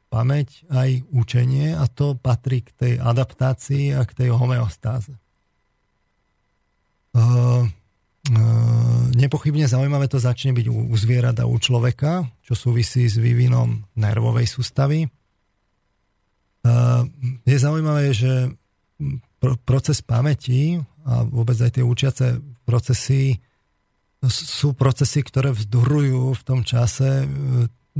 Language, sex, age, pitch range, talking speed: Slovak, male, 40-59, 120-130 Hz, 110 wpm